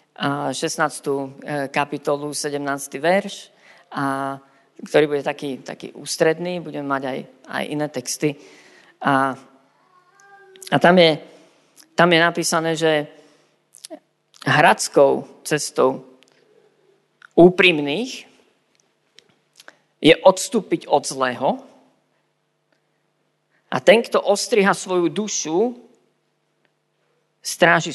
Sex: female